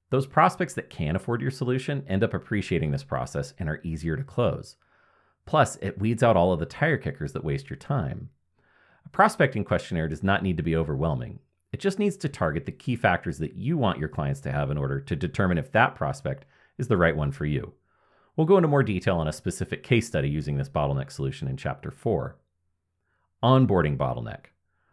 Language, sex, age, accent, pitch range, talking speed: English, male, 40-59, American, 75-120 Hz, 205 wpm